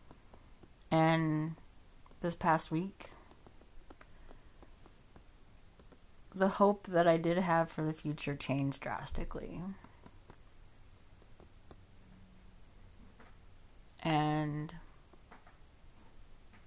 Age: 30-49